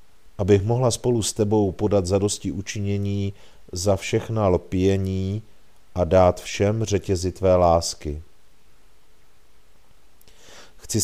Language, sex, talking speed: Czech, male, 100 wpm